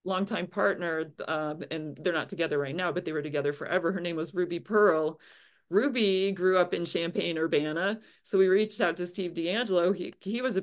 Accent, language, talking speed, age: American, English, 200 wpm, 40-59